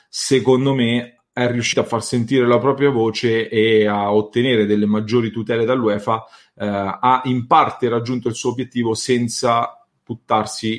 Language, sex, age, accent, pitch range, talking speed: English, male, 30-49, Italian, 105-125 Hz, 150 wpm